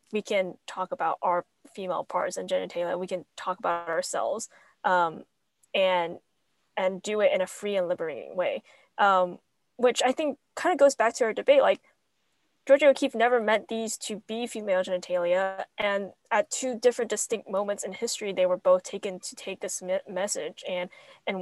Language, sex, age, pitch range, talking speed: English, female, 20-39, 185-250 Hz, 185 wpm